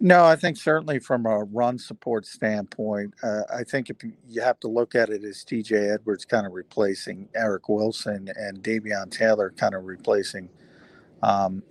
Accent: American